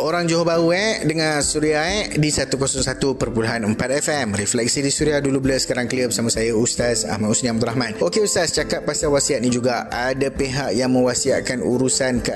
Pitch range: 115-150 Hz